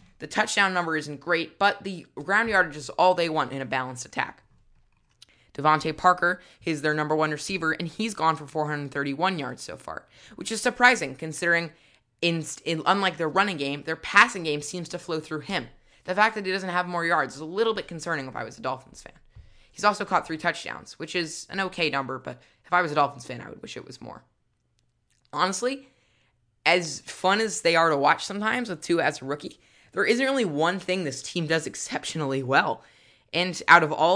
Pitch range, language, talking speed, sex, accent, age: 150-185 Hz, English, 205 wpm, female, American, 20-39